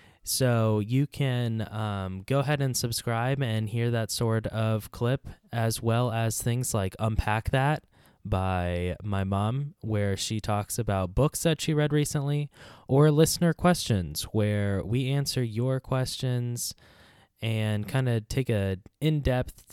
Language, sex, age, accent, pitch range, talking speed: English, male, 20-39, American, 105-135 Hz, 145 wpm